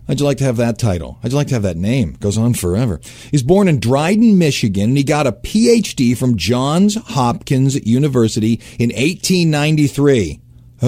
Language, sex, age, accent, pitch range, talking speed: English, male, 40-59, American, 115-155 Hz, 200 wpm